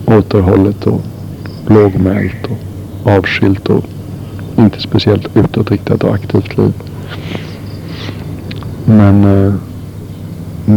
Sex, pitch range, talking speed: male, 95-110 Hz, 70 wpm